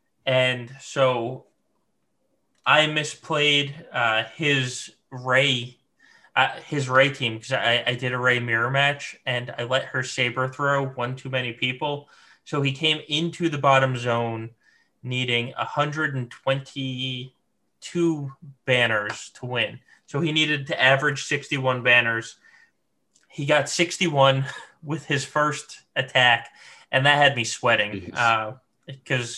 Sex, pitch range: male, 125-145 Hz